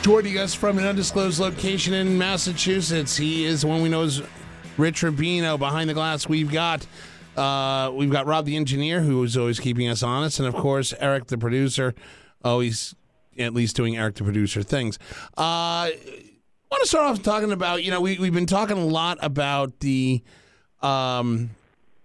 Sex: male